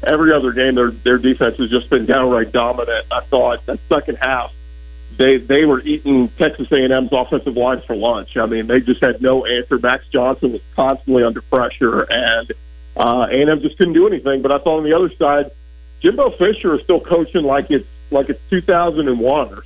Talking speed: 205 wpm